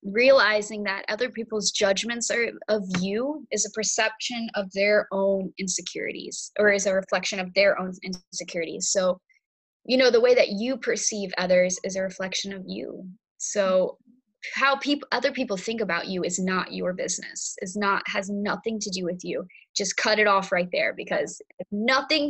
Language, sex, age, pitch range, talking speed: English, female, 10-29, 190-225 Hz, 175 wpm